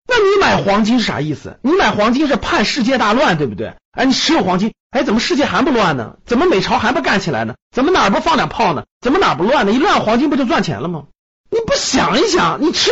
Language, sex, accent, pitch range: Chinese, male, native, 170-275 Hz